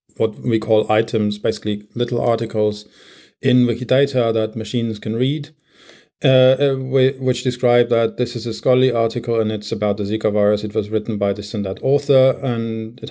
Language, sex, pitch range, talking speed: German, male, 110-130 Hz, 175 wpm